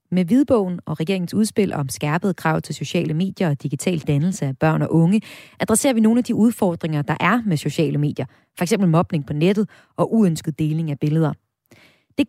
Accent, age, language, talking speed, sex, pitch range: native, 30-49, Danish, 190 wpm, female, 155-220 Hz